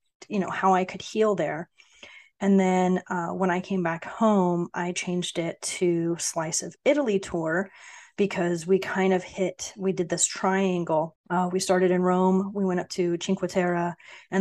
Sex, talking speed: female, 185 wpm